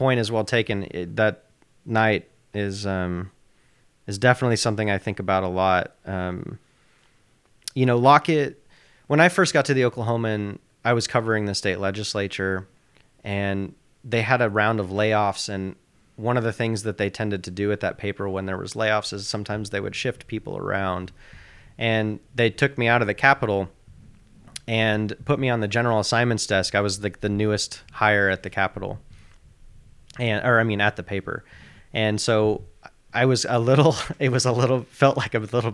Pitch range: 95-115 Hz